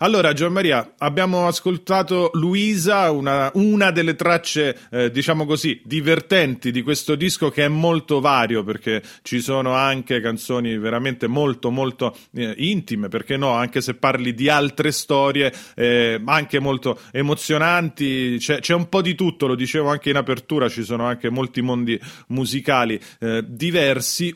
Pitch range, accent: 130-175 Hz, native